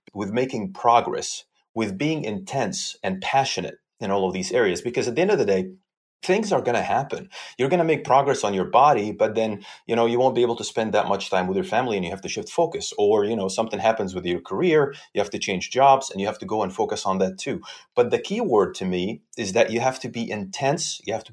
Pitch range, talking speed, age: 95-150 Hz, 265 wpm, 30-49